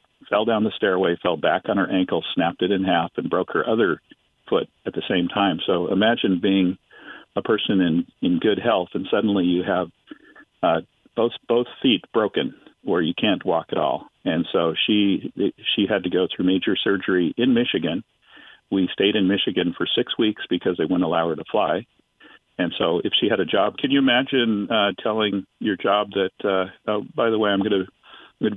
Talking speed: 200 wpm